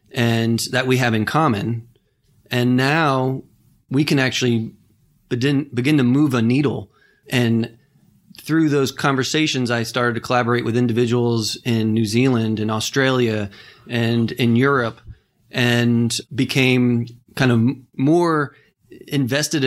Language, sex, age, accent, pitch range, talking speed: English, male, 30-49, American, 115-135 Hz, 125 wpm